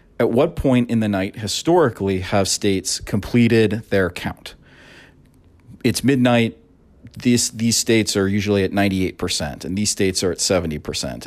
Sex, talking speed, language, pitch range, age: male, 145 wpm, English, 95-115 Hz, 40-59